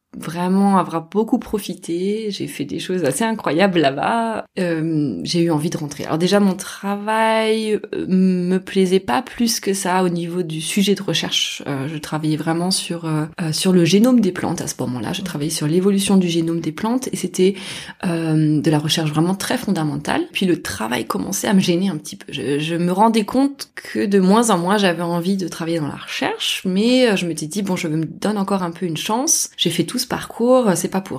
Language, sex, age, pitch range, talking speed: French, female, 20-39, 160-205 Hz, 215 wpm